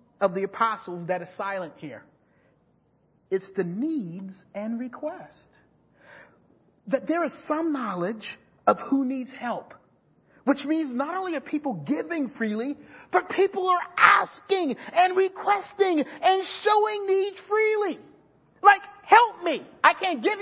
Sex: male